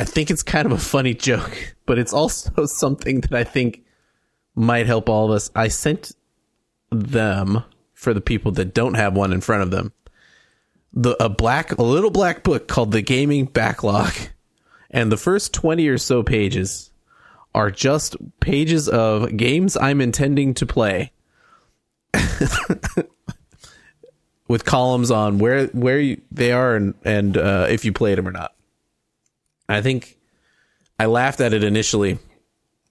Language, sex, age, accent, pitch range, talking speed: English, male, 30-49, American, 100-125 Hz, 155 wpm